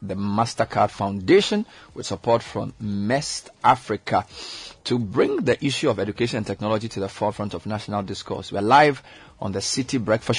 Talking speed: 160 wpm